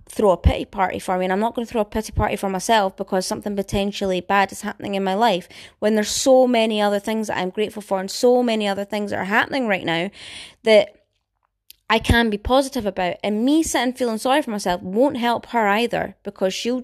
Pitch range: 195-230 Hz